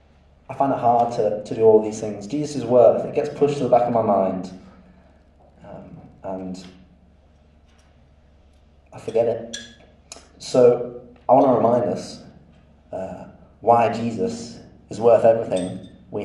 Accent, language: British, English